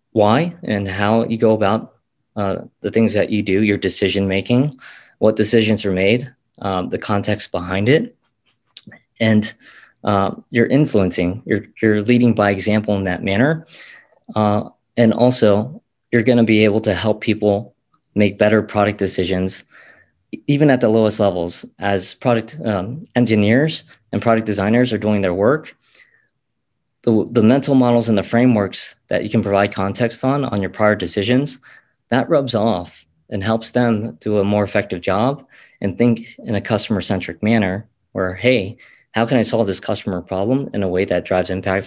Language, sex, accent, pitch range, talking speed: English, male, American, 100-120 Hz, 165 wpm